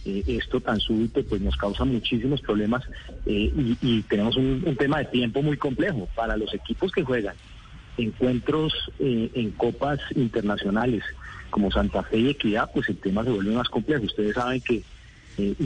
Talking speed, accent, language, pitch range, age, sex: 175 wpm, Colombian, Spanish, 105-140 Hz, 40-59, male